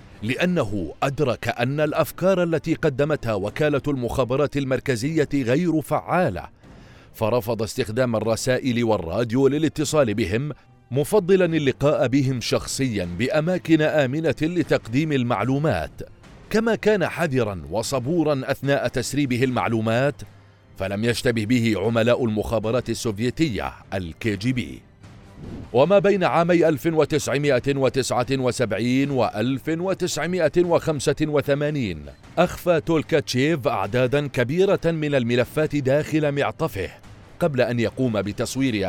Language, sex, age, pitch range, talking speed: Arabic, male, 40-59, 115-150 Hz, 90 wpm